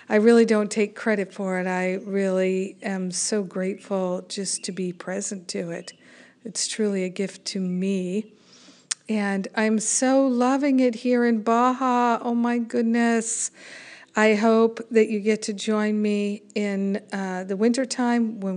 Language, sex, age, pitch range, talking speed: English, female, 50-69, 190-225 Hz, 155 wpm